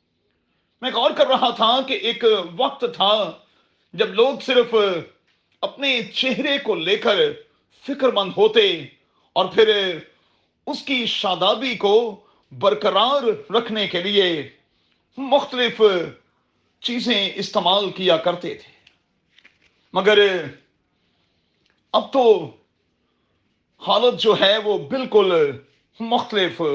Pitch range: 195-265 Hz